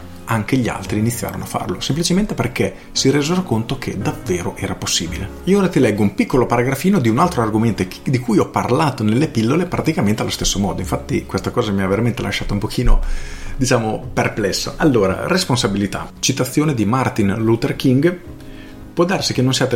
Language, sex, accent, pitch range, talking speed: Italian, male, native, 100-125 Hz, 180 wpm